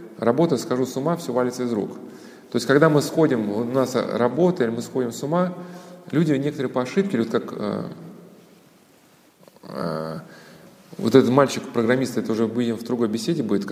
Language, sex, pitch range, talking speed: Russian, male, 120-170 Hz, 170 wpm